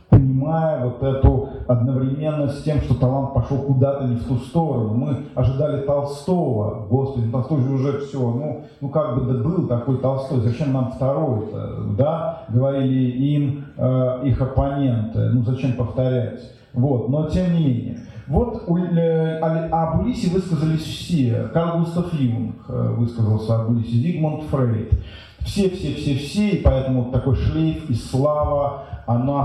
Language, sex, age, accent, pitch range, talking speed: Russian, male, 40-59, native, 120-150 Hz, 155 wpm